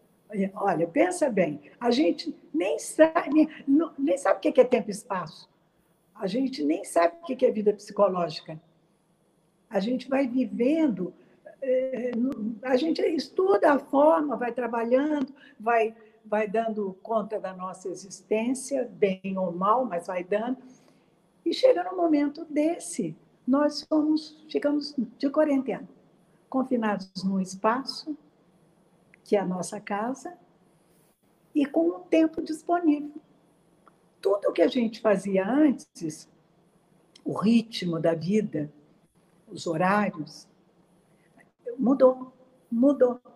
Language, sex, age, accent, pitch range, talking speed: Portuguese, female, 60-79, Brazilian, 185-295 Hz, 120 wpm